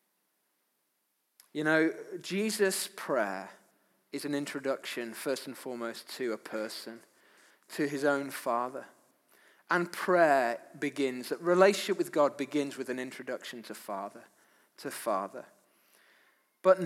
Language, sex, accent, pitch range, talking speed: English, male, British, 140-190 Hz, 120 wpm